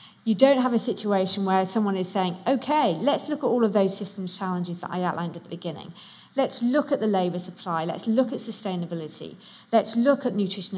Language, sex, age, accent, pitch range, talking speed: English, female, 50-69, British, 180-225 Hz, 210 wpm